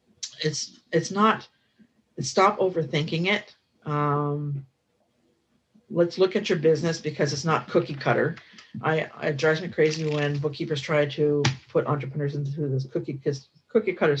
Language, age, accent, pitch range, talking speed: English, 50-69, American, 140-170 Hz, 140 wpm